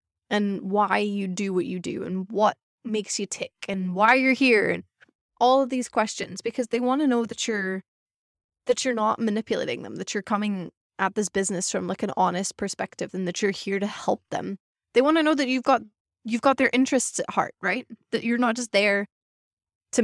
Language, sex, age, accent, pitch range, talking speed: English, female, 20-39, American, 195-245 Hz, 215 wpm